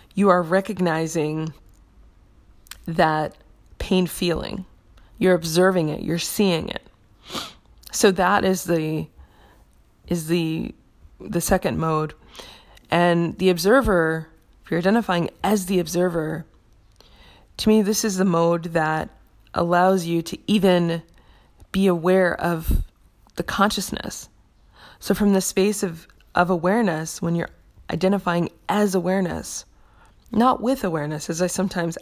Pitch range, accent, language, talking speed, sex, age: 150-185 Hz, American, English, 120 wpm, female, 20-39